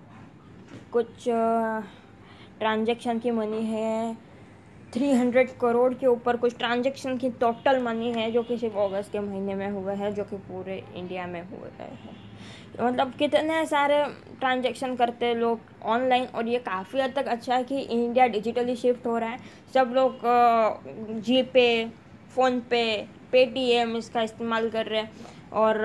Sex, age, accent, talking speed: female, 20-39, native, 155 wpm